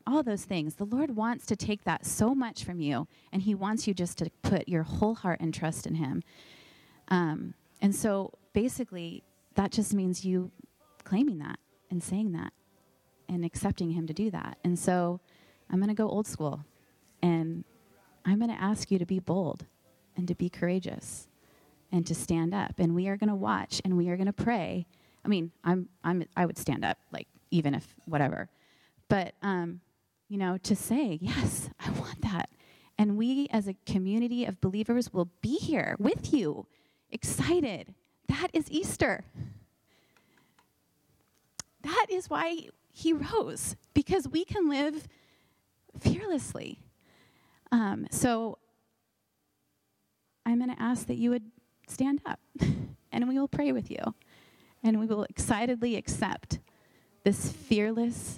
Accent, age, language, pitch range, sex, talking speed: American, 30-49, English, 175-235 Hz, female, 160 wpm